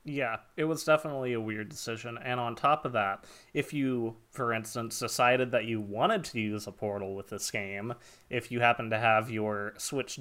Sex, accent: male, American